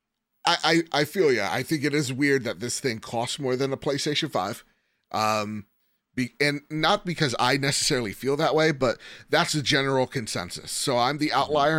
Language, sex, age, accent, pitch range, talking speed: English, male, 30-49, American, 110-145 Hz, 195 wpm